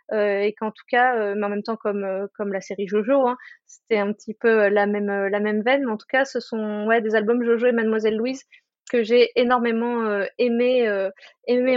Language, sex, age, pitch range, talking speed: French, female, 20-39, 215-250 Hz, 235 wpm